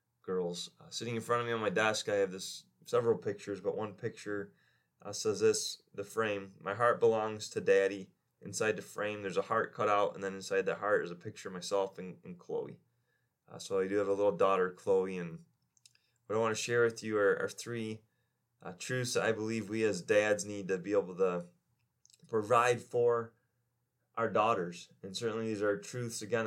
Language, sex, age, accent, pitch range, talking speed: English, male, 20-39, American, 95-120 Hz, 210 wpm